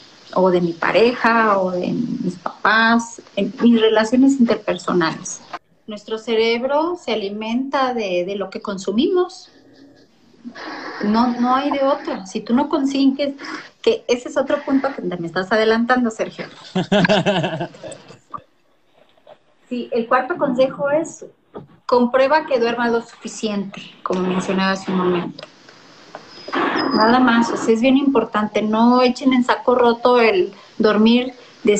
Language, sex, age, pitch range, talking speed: Spanish, female, 30-49, 205-270 Hz, 130 wpm